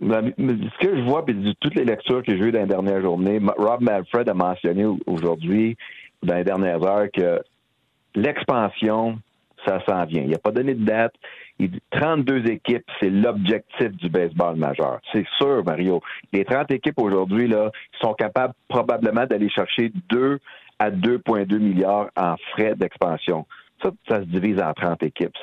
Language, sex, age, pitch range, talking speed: French, male, 60-79, 95-115 Hz, 170 wpm